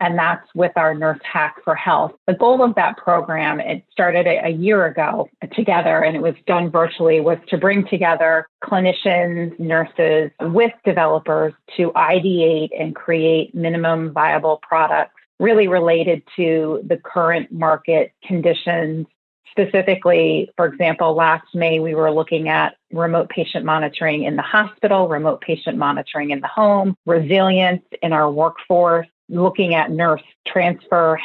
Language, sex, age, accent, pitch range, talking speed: English, female, 30-49, American, 160-180 Hz, 145 wpm